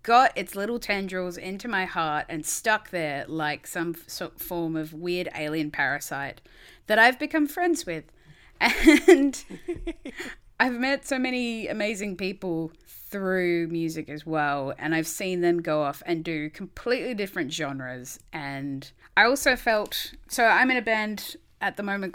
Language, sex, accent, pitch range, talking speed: English, female, Australian, 155-210 Hz, 150 wpm